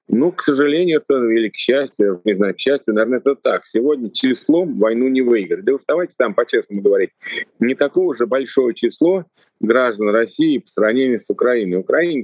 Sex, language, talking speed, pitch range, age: male, Russian, 180 wpm, 110-155 Hz, 40-59